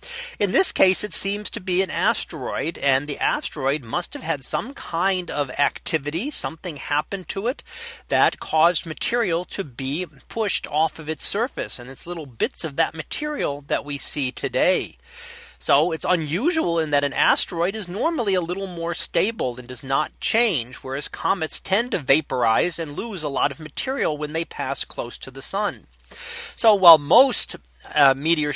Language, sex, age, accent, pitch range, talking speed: English, male, 40-59, American, 145-210 Hz, 175 wpm